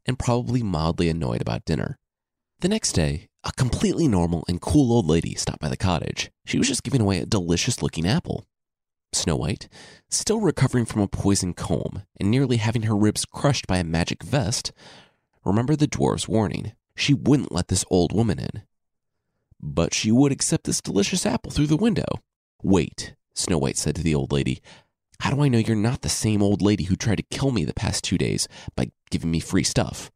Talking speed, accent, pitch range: 200 wpm, American, 85-125 Hz